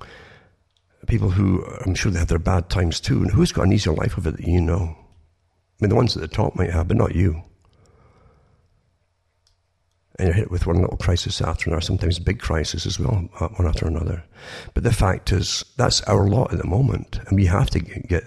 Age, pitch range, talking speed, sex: 60-79, 85-110 Hz, 215 wpm, male